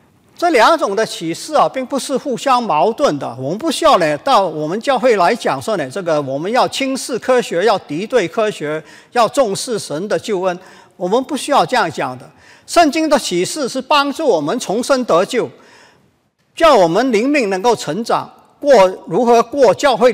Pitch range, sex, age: 175-270 Hz, male, 50-69